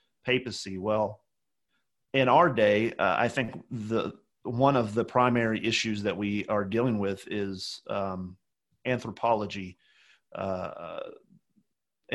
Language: English